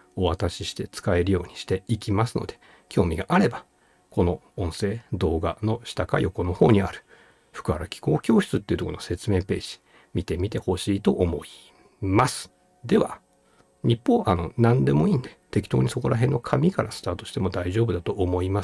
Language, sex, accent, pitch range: Japanese, male, native, 85-110 Hz